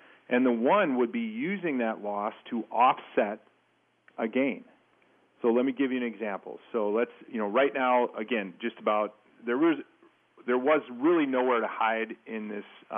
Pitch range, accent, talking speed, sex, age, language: 105-125 Hz, American, 175 wpm, male, 40-59, English